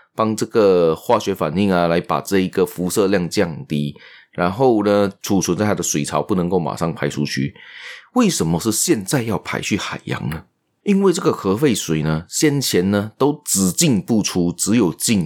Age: 30-49